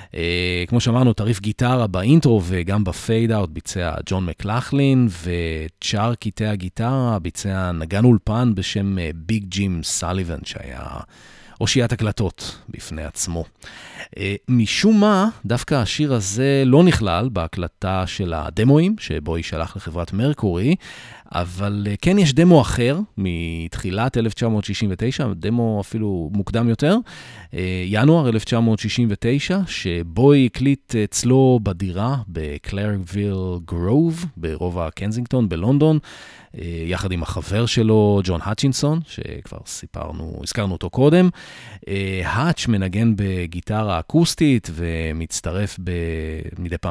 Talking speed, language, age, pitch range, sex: 100 wpm, English, 30-49, 90-120 Hz, male